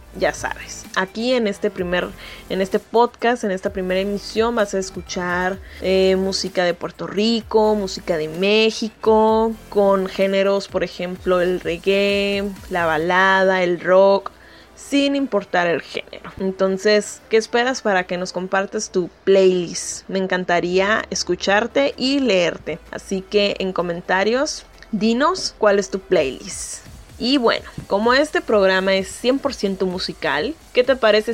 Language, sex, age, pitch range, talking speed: Spanish, female, 20-39, 185-225 Hz, 135 wpm